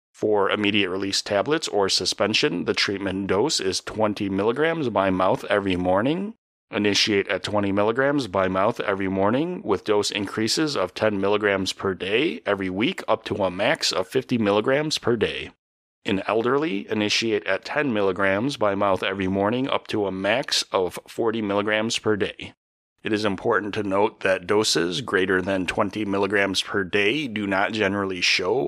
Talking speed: 150 wpm